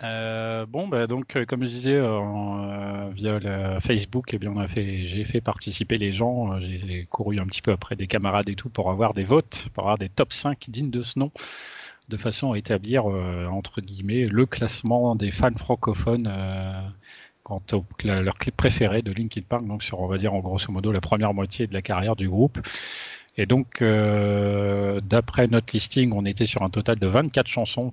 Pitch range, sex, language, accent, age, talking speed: 100-120 Hz, male, French, French, 30-49, 215 wpm